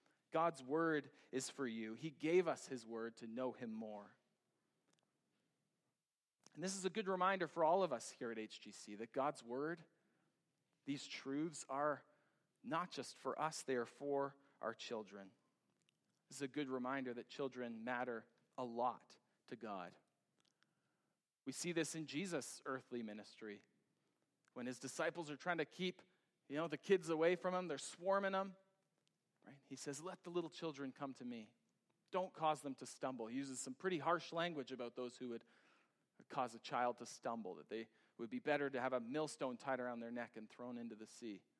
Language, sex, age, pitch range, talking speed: English, male, 40-59, 120-165 Hz, 180 wpm